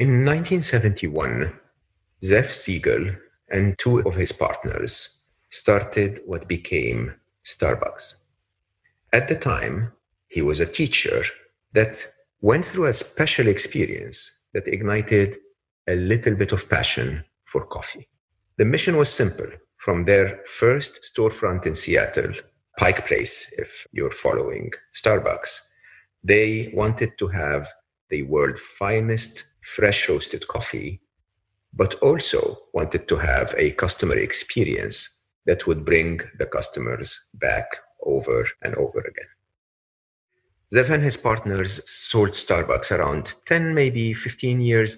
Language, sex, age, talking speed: English, male, 50-69, 120 wpm